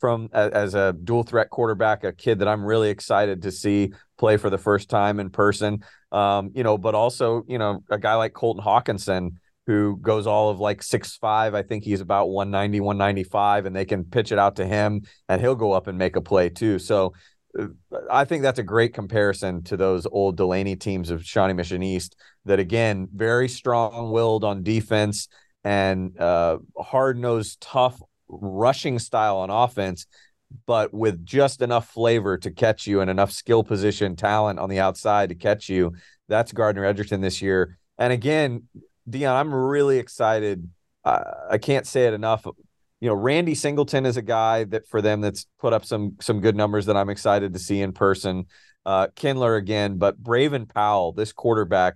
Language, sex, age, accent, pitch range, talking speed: English, male, 40-59, American, 95-115 Hz, 190 wpm